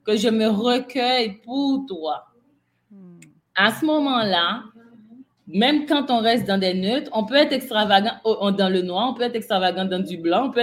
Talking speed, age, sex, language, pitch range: 180 wpm, 30-49, female, French, 190-240 Hz